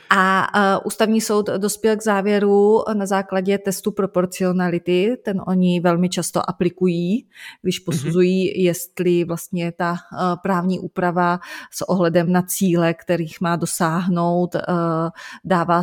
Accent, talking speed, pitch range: native, 125 wpm, 170-185 Hz